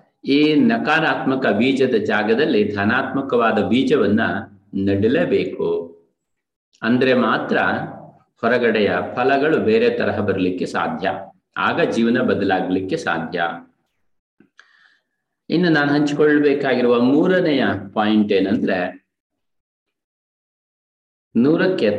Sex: male